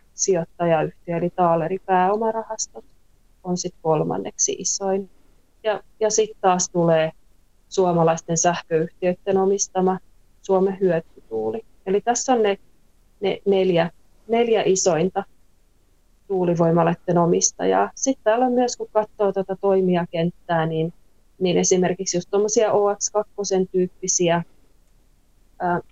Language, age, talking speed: Finnish, 30-49, 95 wpm